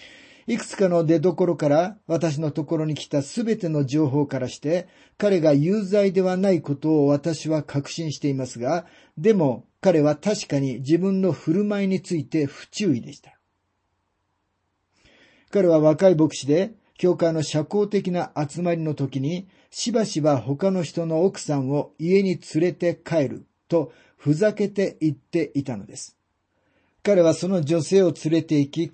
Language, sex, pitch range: Japanese, male, 150-190 Hz